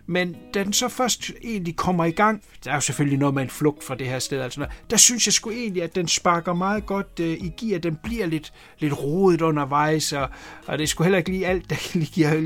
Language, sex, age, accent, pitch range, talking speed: Danish, male, 60-79, native, 150-200 Hz, 250 wpm